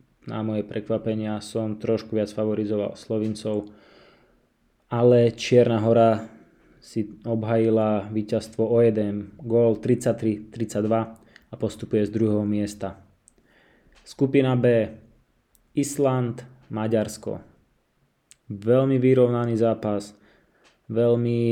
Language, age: Slovak, 20-39